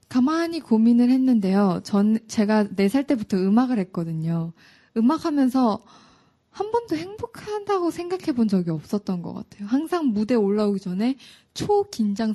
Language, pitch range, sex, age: Korean, 190-245 Hz, female, 20-39